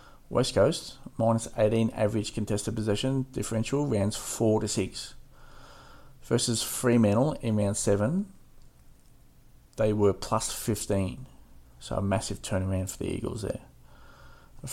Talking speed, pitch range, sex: 120 wpm, 100-115 Hz, male